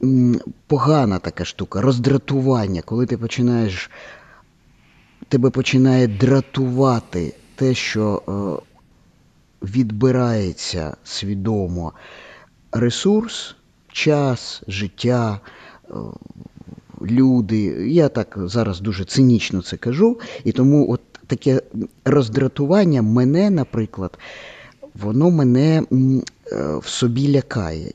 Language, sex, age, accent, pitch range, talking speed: Ukrainian, male, 50-69, native, 105-135 Hz, 80 wpm